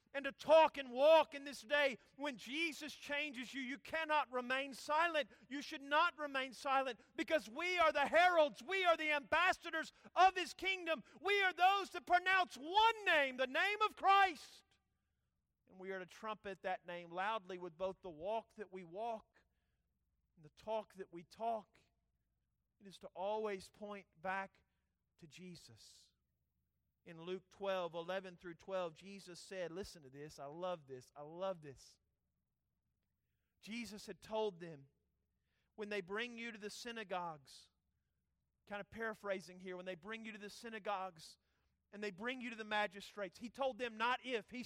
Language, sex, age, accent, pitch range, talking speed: English, male, 40-59, American, 185-300 Hz, 170 wpm